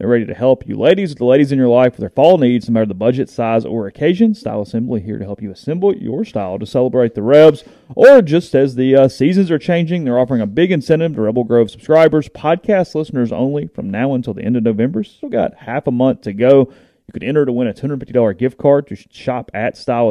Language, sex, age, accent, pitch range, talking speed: English, male, 30-49, American, 110-145 Hz, 250 wpm